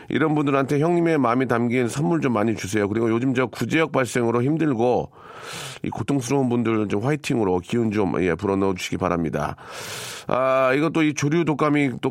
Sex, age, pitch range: male, 40-59, 110-145 Hz